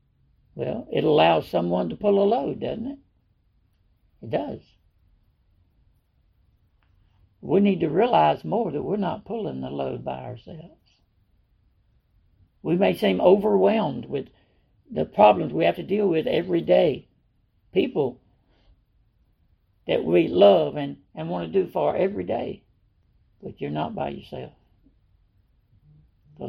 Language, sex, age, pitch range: English, male, 60-79, 115-185 Hz